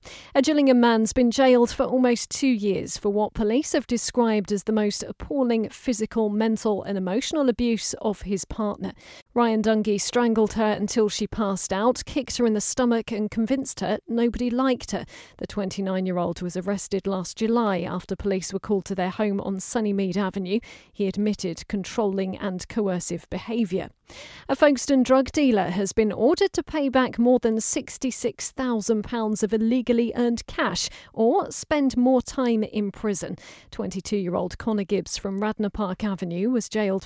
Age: 40-59